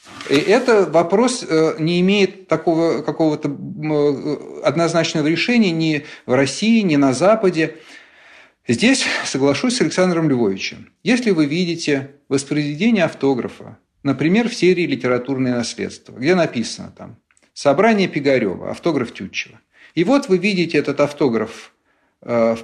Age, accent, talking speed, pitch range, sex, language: 50-69, native, 115 wpm, 135-185 Hz, male, Russian